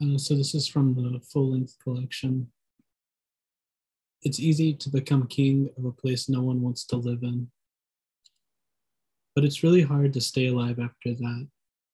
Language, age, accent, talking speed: English, 20-39, American, 155 wpm